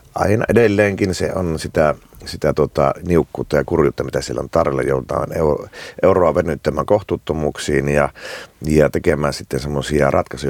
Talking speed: 135 wpm